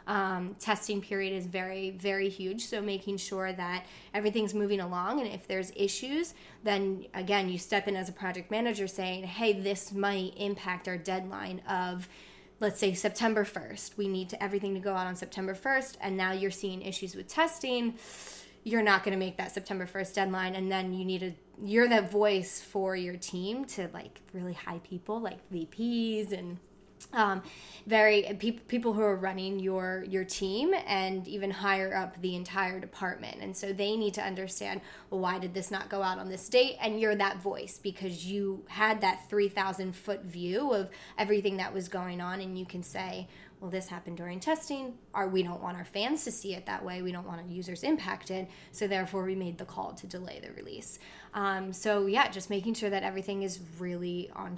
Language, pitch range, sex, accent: English, 185-205 Hz, female, American